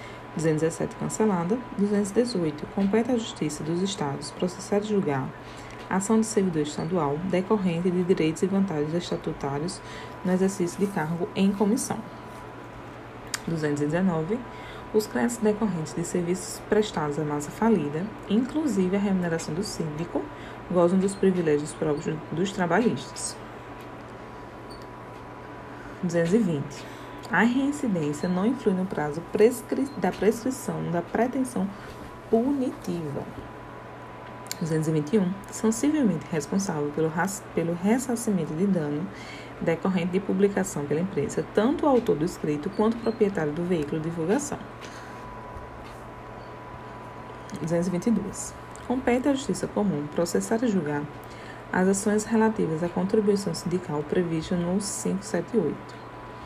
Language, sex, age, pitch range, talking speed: Portuguese, female, 20-39, 160-215 Hz, 110 wpm